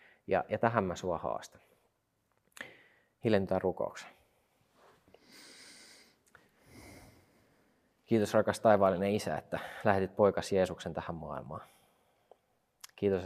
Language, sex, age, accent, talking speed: Finnish, male, 30-49, native, 85 wpm